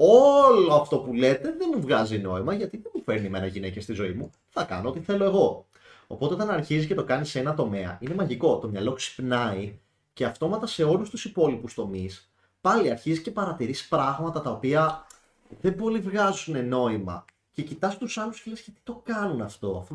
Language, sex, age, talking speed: Greek, male, 30-49, 195 wpm